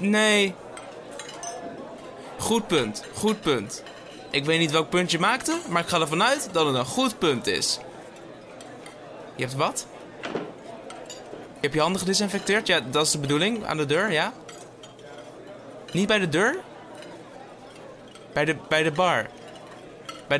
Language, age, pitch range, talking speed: Dutch, 20-39, 165-225 Hz, 145 wpm